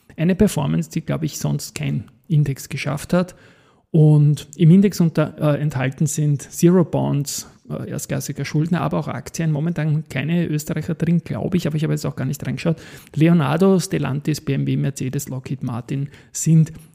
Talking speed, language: 165 wpm, German